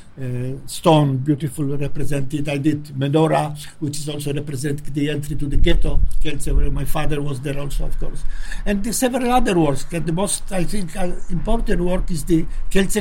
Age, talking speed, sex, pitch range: 60-79, 185 wpm, male, 150-185 Hz